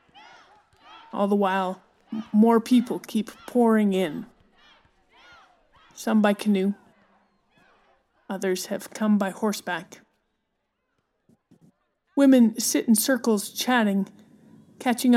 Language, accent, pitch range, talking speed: English, American, 205-245 Hz, 85 wpm